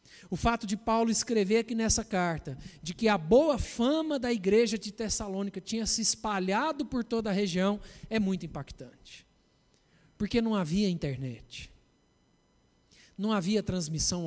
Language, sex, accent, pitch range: Portuguese, male, Brazilian, 145-205 Hz